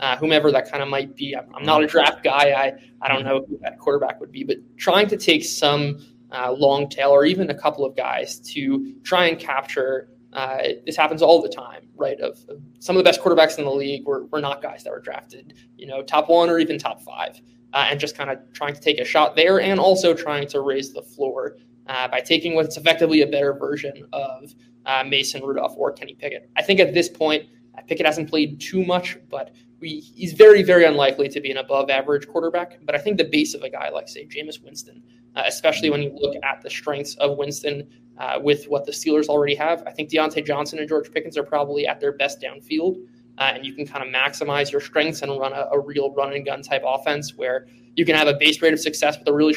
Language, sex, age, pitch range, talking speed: English, male, 20-39, 135-160 Hz, 235 wpm